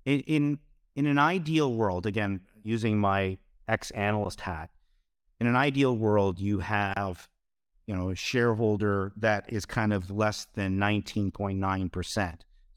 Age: 50-69